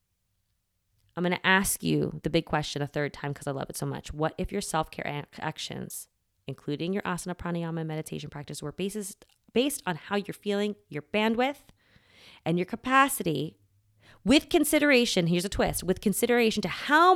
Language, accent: English, American